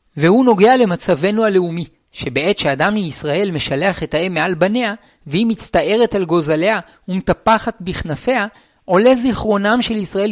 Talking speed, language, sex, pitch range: 130 wpm, Hebrew, male, 165-215 Hz